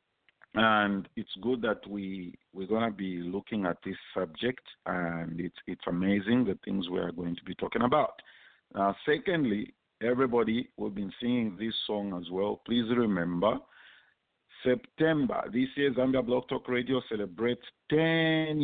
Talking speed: 160 wpm